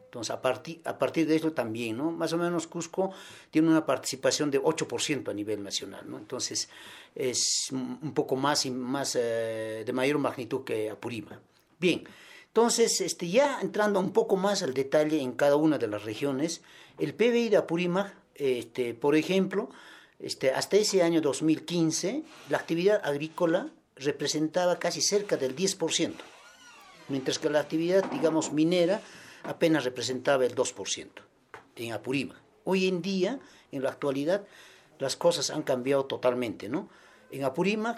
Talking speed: 145 wpm